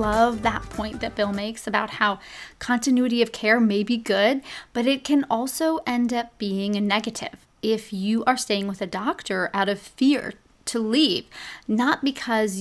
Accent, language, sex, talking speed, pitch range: American, English, female, 175 wpm, 205-255 Hz